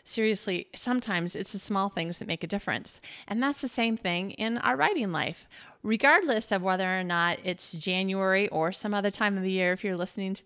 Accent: American